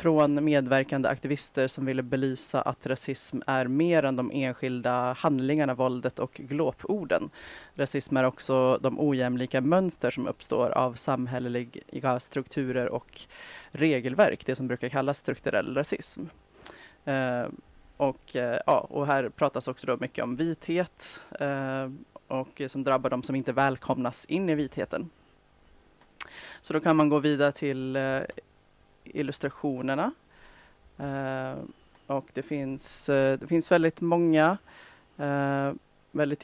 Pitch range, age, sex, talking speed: 130-150 Hz, 20-39, female, 130 wpm